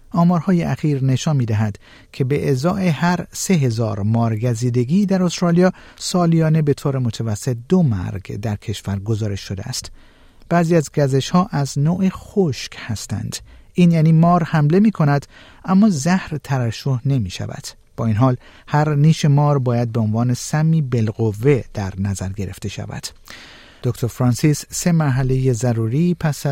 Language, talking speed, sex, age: Persian, 145 wpm, male, 50-69